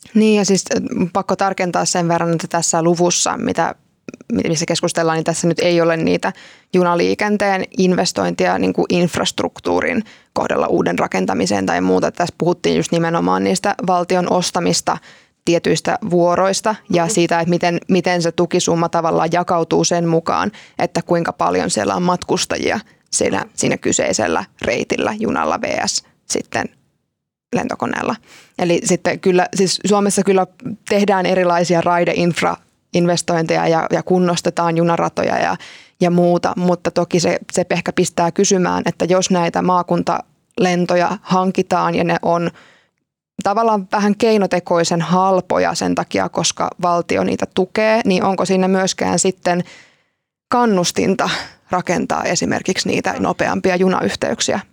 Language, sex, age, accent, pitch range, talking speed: Finnish, female, 20-39, native, 170-190 Hz, 125 wpm